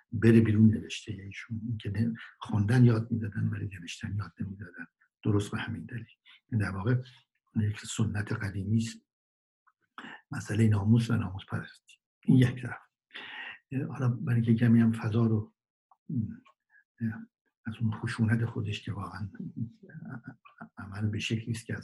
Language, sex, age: Persian, male, 60-79